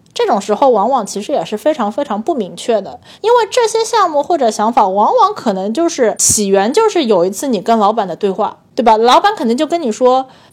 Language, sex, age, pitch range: Chinese, female, 20-39, 195-265 Hz